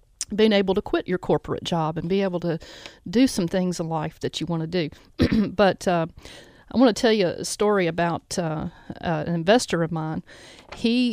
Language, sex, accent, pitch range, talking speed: English, female, American, 165-195 Hz, 205 wpm